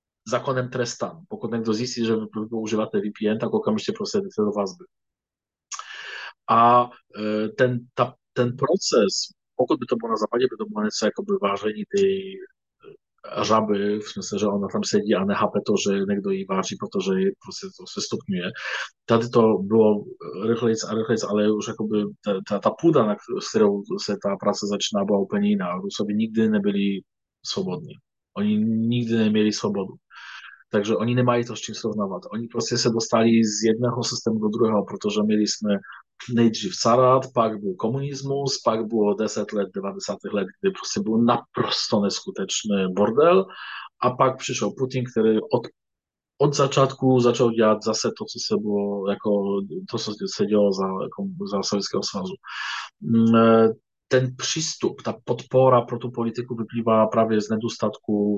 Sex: male